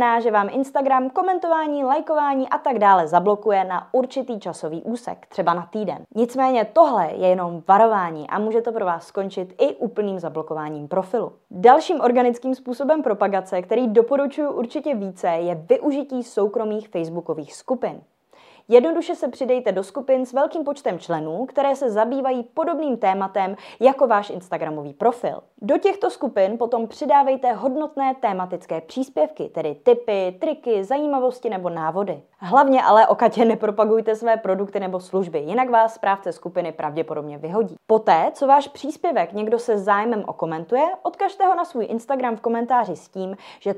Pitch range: 190-270 Hz